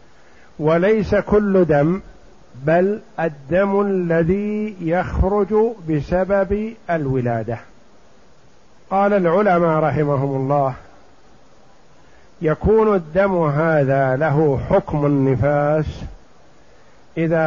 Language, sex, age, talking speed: Arabic, male, 50-69, 70 wpm